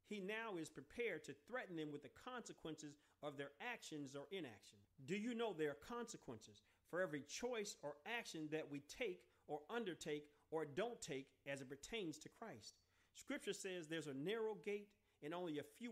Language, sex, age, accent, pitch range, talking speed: English, male, 40-59, American, 135-195 Hz, 185 wpm